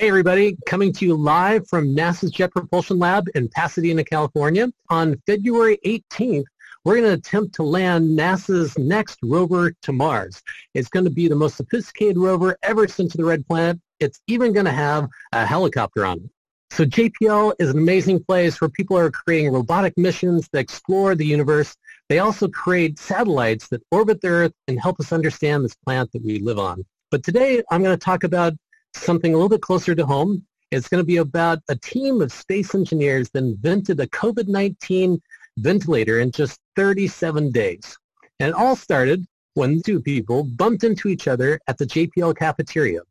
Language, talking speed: English, 180 wpm